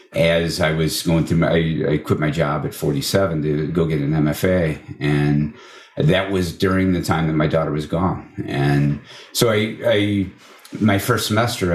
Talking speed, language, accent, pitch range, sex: 185 wpm, English, American, 75-100 Hz, male